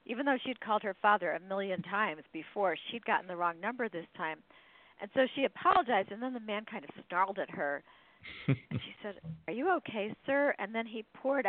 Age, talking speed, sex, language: 50-69, 215 wpm, female, English